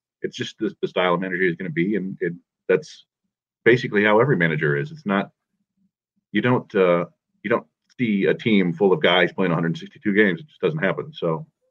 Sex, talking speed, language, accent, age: male, 205 wpm, English, American, 40-59